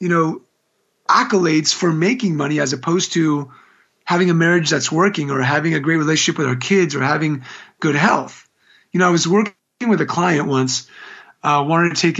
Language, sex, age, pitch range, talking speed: English, male, 30-49, 150-195 Hz, 190 wpm